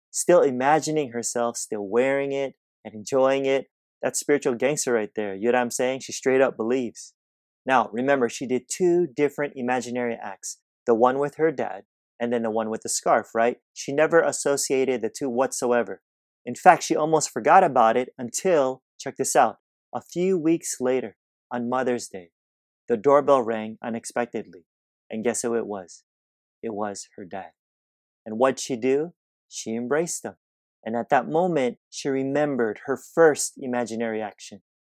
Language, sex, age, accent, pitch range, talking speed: English, male, 30-49, American, 110-135 Hz, 170 wpm